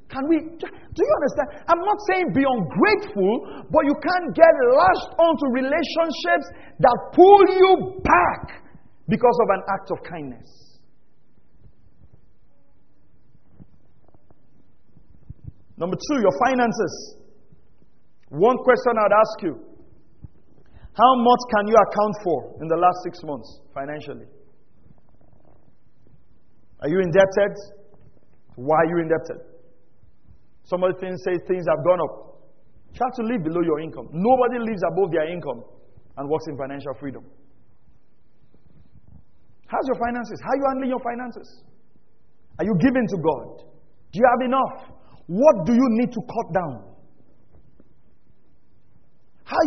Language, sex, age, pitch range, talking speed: English, male, 40-59, 180-270 Hz, 130 wpm